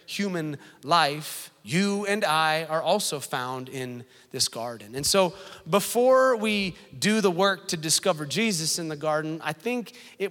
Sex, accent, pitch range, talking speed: male, American, 145-200 Hz, 155 wpm